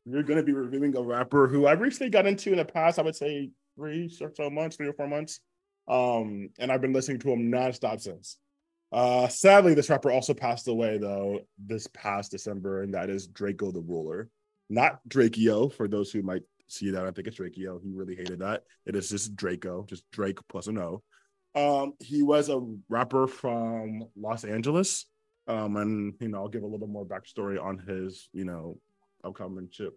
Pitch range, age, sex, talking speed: 105-150 Hz, 20-39, male, 205 wpm